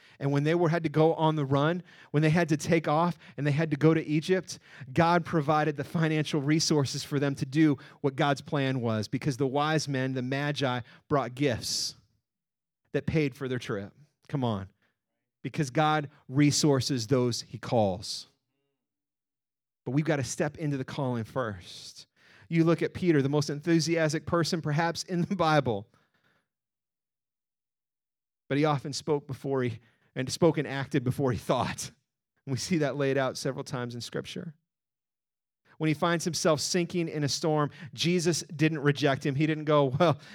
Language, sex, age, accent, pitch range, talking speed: English, male, 40-59, American, 130-155 Hz, 170 wpm